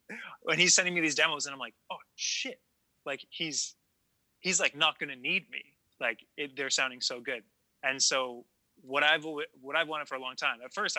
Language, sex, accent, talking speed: English, male, American, 205 wpm